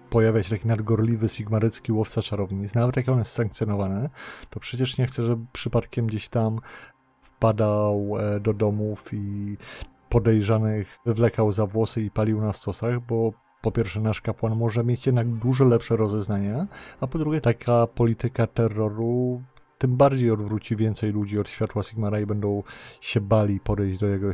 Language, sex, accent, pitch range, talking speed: Polish, male, native, 105-120 Hz, 160 wpm